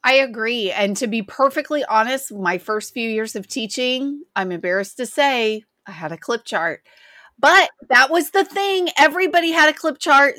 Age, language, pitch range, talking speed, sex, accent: 30-49, English, 215-290 Hz, 185 wpm, female, American